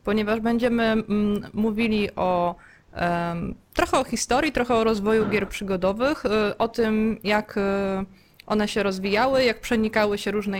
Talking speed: 125 wpm